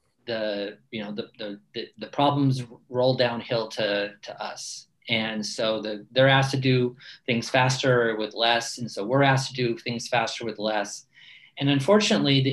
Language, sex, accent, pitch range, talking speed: English, male, American, 115-145 Hz, 170 wpm